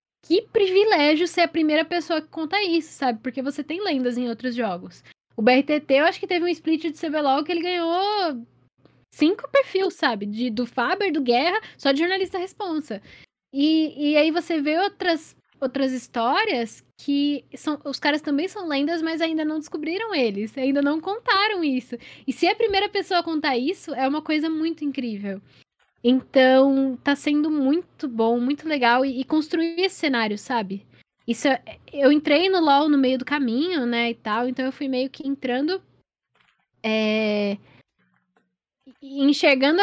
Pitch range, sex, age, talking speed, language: 245-315 Hz, female, 10-29, 170 wpm, Portuguese